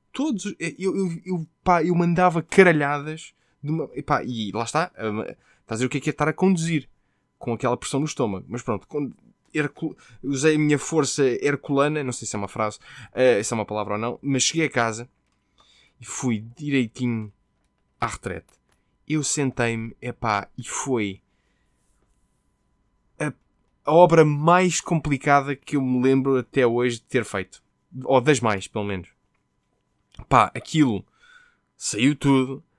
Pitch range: 115-155 Hz